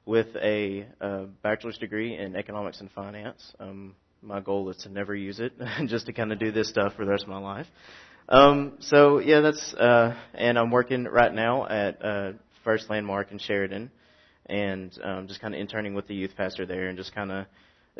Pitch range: 95-115 Hz